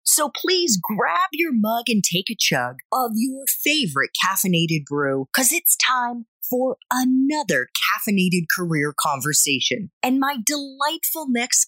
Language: English